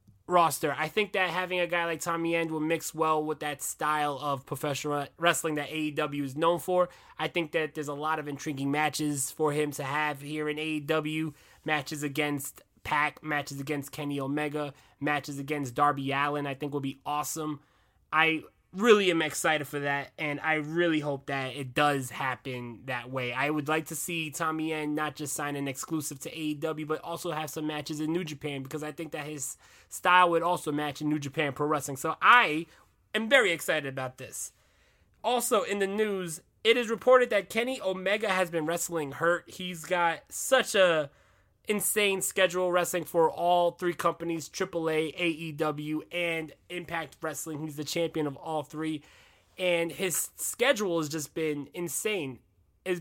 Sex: male